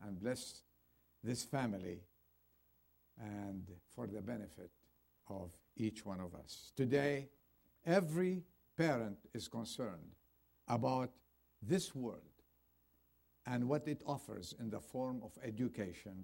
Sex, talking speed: male, 110 wpm